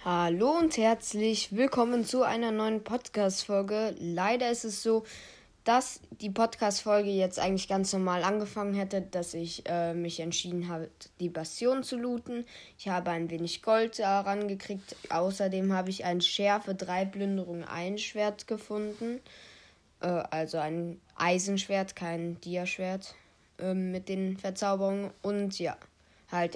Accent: German